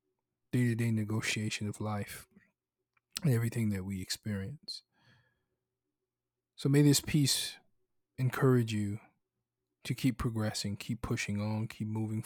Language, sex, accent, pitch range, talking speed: English, male, American, 105-145 Hz, 115 wpm